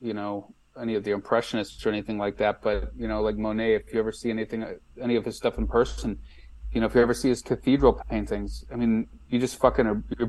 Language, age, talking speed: English, 30-49, 245 wpm